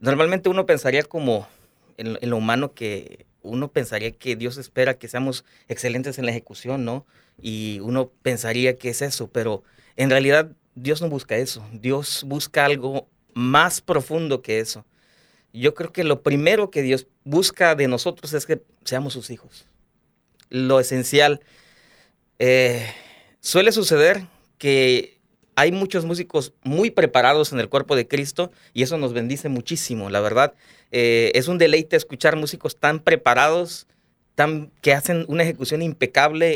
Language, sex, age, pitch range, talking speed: Spanish, male, 30-49, 125-160 Hz, 150 wpm